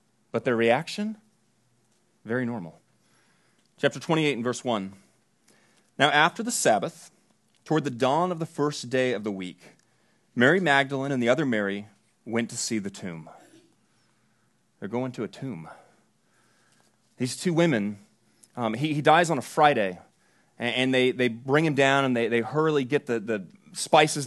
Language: English